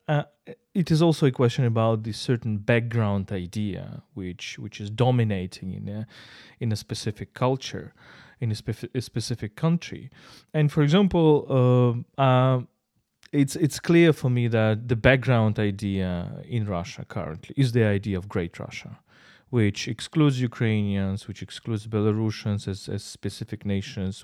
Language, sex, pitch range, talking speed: English, male, 105-135 Hz, 150 wpm